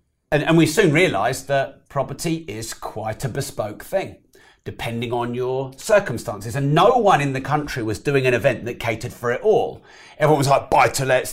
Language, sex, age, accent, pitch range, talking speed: English, male, 30-49, British, 110-140 Hz, 185 wpm